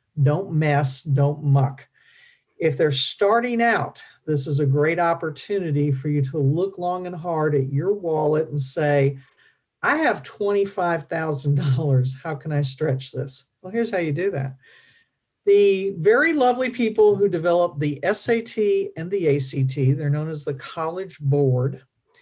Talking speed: 150 wpm